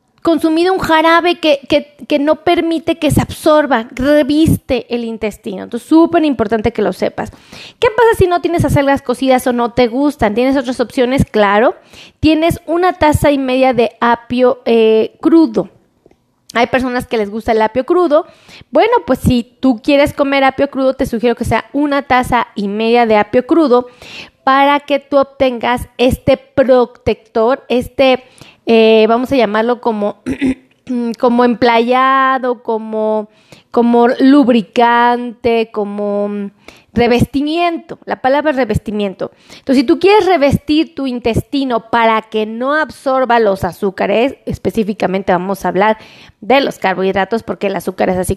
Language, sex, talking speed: Spanish, female, 145 wpm